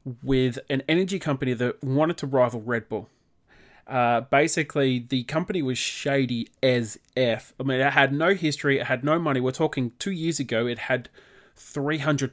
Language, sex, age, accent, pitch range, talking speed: English, male, 30-49, Australian, 120-150 Hz, 175 wpm